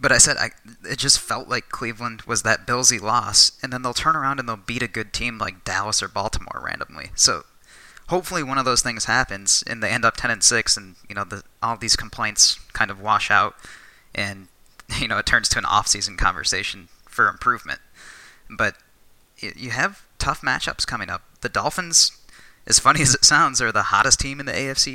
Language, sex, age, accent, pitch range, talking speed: English, male, 20-39, American, 110-130 Hz, 205 wpm